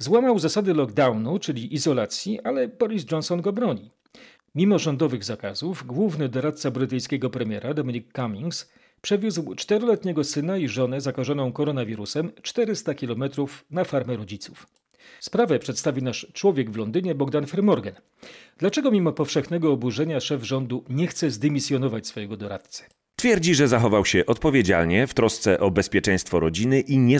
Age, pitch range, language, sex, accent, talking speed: 40-59, 105-155 Hz, Polish, male, native, 135 wpm